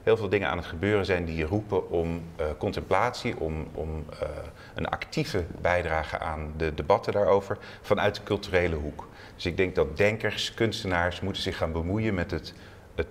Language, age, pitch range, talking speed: Dutch, 40-59, 85-105 Hz, 180 wpm